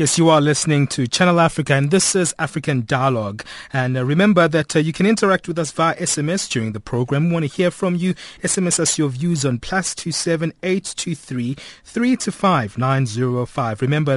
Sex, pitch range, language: male, 130-180 Hz, English